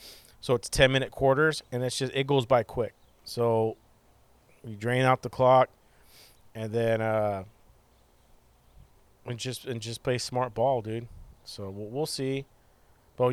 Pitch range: 115-145 Hz